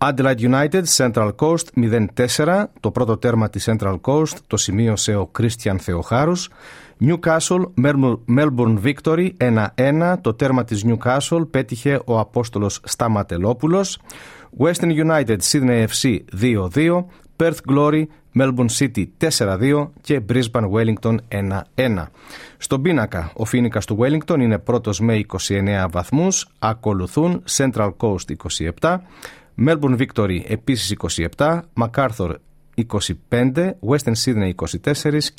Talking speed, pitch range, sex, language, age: 110 wpm, 105-150 Hz, male, Greek, 40-59